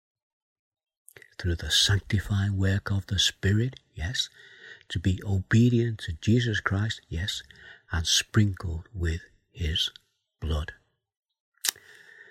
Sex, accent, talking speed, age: male, British, 100 wpm, 60-79